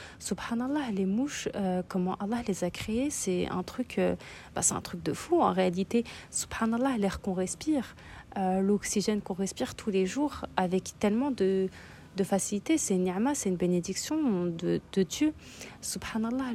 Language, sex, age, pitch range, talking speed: French, female, 30-49, 185-235 Hz, 170 wpm